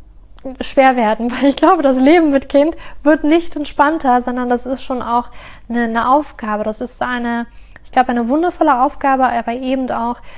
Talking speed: 180 wpm